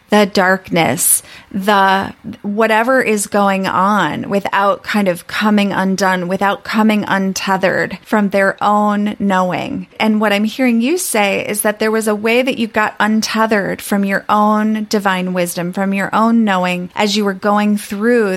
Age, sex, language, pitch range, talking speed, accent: 30-49, female, English, 195-225 Hz, 160 wpm, American